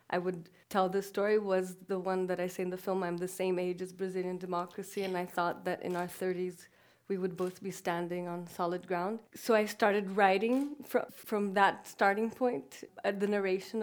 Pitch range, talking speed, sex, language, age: 185-220 Hz, 210 wpm, female, English, 30-49